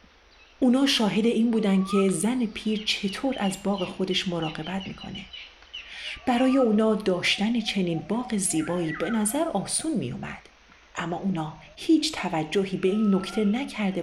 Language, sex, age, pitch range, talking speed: Persian, female, 40-59, 185-235 Hz, 135 wpm